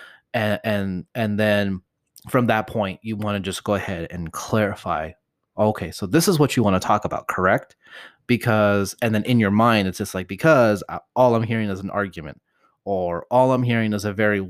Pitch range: 100-120 Hz